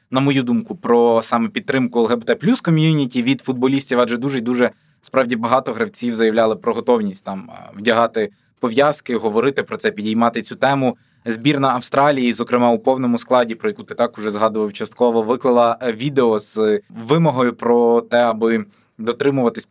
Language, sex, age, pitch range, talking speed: Ukrainian, male, 20-39, 115-150 Hz, 145 wpm